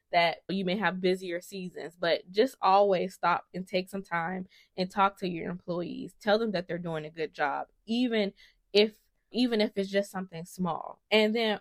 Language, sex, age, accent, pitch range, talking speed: English, female, 20-39, American, 175-205 Hz, 190 wpm